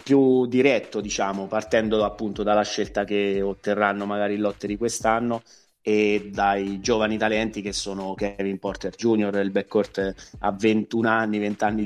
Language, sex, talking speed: Italian, male, 145 wpm